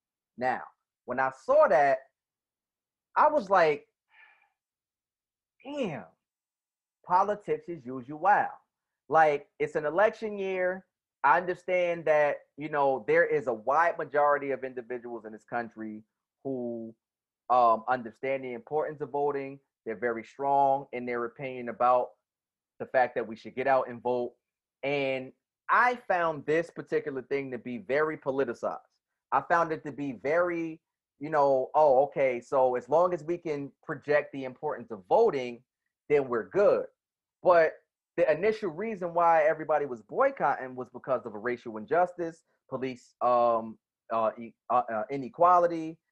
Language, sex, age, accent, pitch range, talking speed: English, male, 30-49, American, 130-180 Hz, 140 wpm